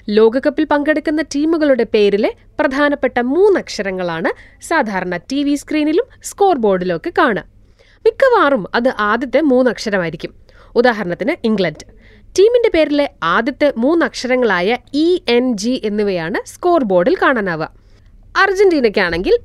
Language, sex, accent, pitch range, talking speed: Malayalam, female, native, 210-325 Hz, 95 wpm